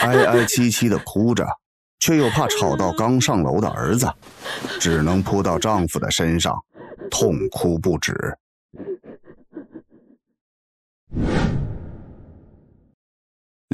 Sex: male